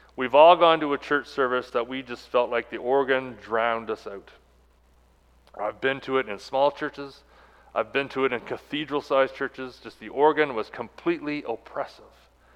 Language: English